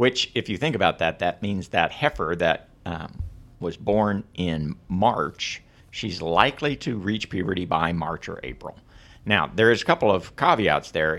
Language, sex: English, male